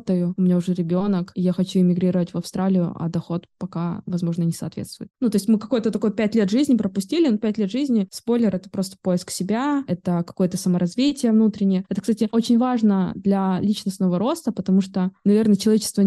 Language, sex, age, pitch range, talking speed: Russian, female, 20-39, 180-210 Hz, 185 wpm